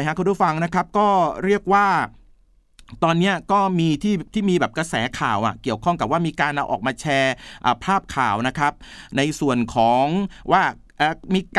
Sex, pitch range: male, 145-200 Hz